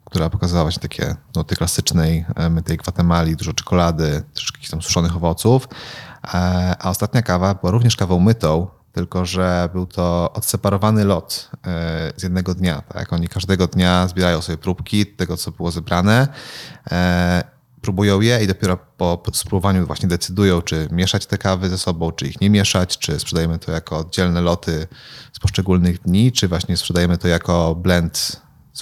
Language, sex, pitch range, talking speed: Polish, male, 85-100 Hz, 160 wpm